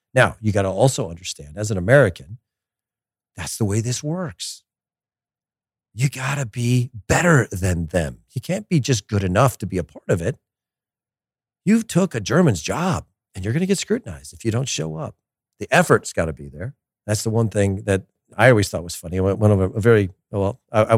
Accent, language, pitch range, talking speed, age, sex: American, English, 95-125 Hz, 205 wpm, 40-59, male